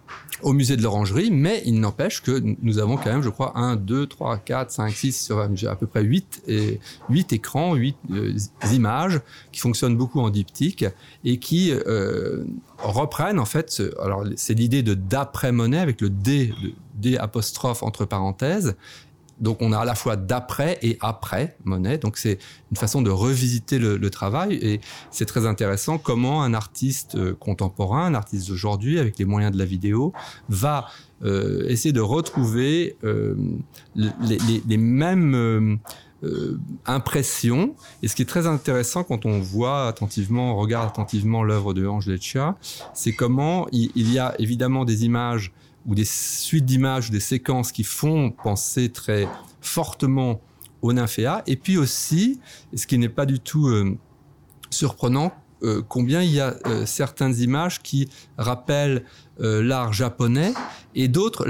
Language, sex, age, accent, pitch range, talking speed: French, male, 40-59, French, 110-140 Hz, 165 wpm